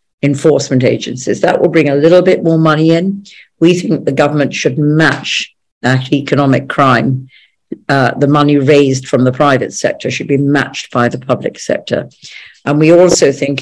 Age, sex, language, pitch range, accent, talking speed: 50-69, female, English, 135-150 Hz, British, 170 wpm